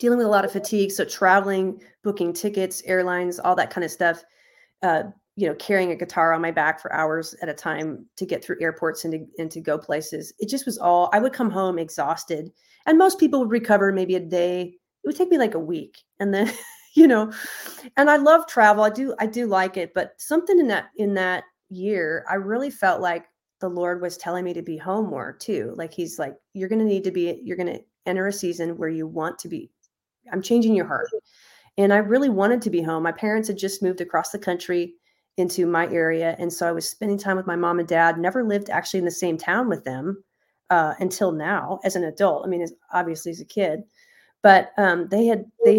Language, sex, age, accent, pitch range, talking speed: English, female, 30-49, American, 175-215 Hz, 230 wpm